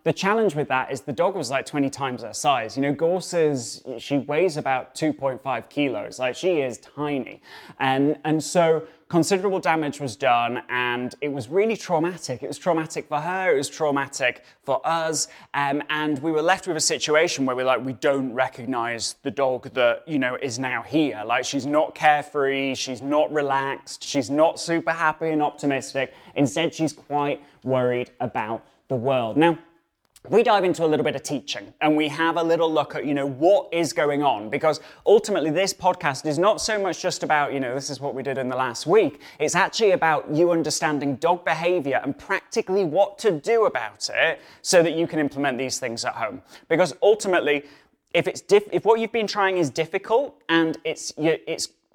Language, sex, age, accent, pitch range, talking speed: English, male, 20-39, British, 135-170 Hz, 195 wpm